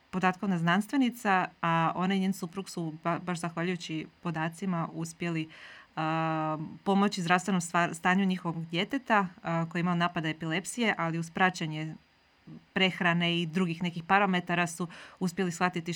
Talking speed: 130 wpm